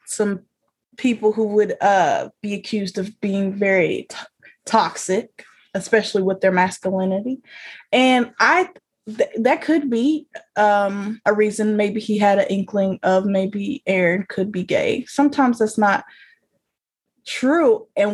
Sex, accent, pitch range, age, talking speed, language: female, American, 205-245 Hz, 20-39, 130 wpm, English